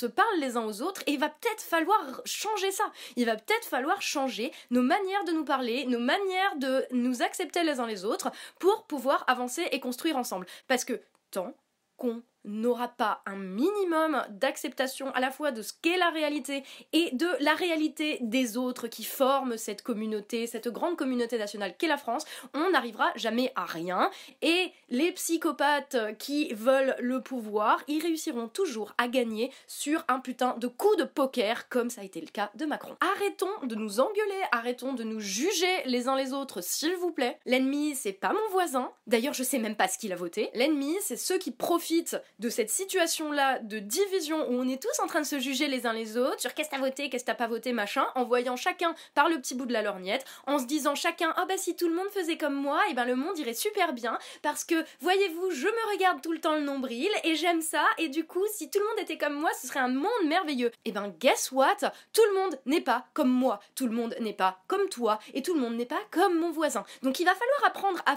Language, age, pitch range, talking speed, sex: French, 20-39, 245-340 Hz, 225 wpm, female